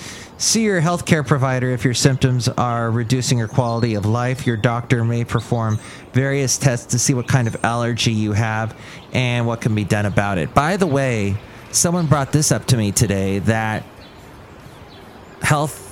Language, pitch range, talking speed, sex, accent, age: English, 110-140 Hz, 175 wpm, male, American, 30-49